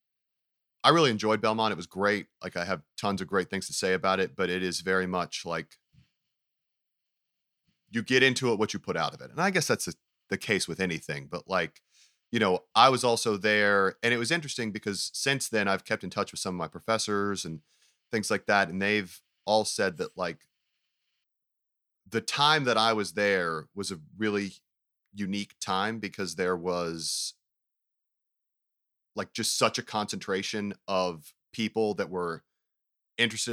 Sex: male